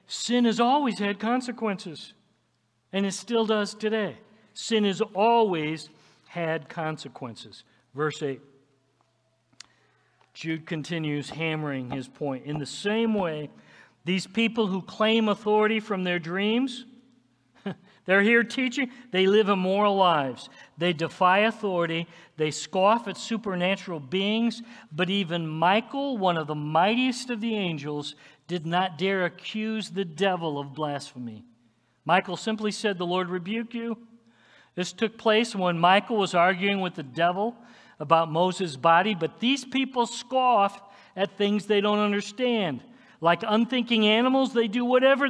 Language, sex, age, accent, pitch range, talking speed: English, male, 50-69, American, 155-220 Hz, 135 wpm